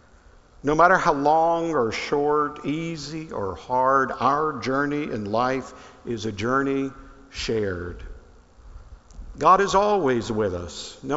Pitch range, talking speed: 95-140 Hz, 125 wpm